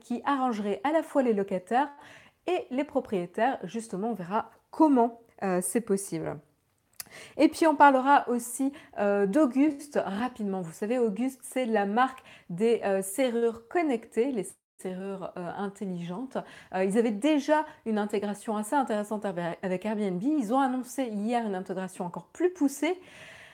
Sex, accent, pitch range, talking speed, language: female, French, 195-255 Hz, 150 wpm, French